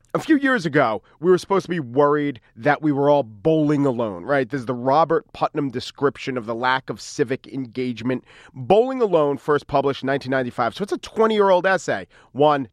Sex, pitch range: male, 125-170 Hz